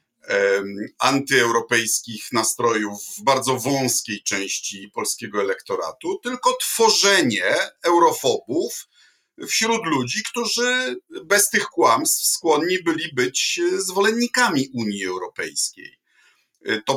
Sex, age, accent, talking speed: male, 50-69, native, 85 wpm